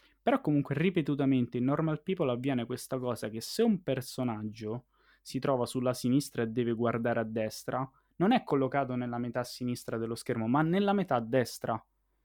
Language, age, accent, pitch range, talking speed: Italian, 20-39, native, 125-150 Hz, 170 wpm